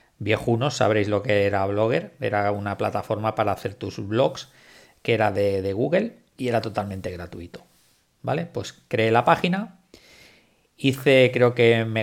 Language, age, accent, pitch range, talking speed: Spanish, 40-59, Spanish, 100-120 Hz, 155 wpm